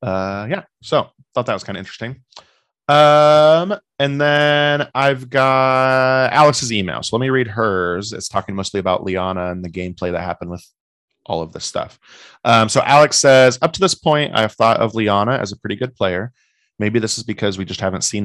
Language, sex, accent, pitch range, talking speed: English, male, American, 95-125 Hz, 205 wpm